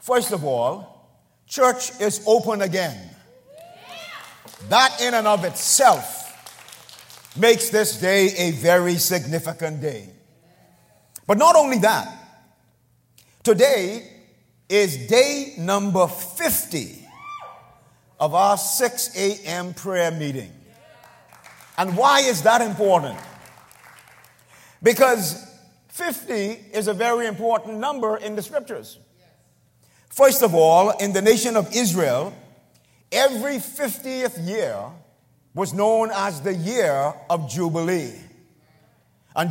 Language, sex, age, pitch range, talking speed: English, male, 50-69, 165-235 Hz, 105 wpm